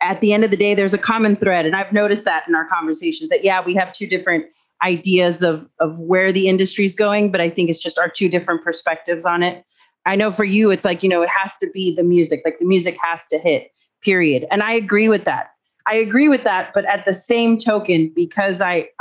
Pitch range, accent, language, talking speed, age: 165-200 Hz, American, English, 250 wpm, 30-49